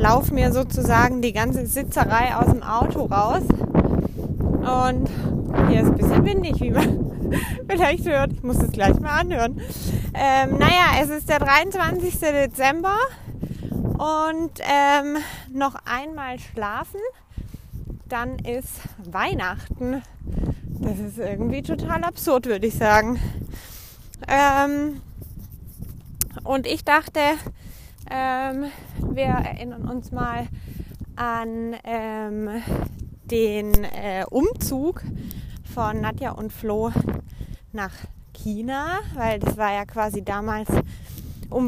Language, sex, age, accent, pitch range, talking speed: German, female, 20-39, German, 225-290 Hz, 110 wpm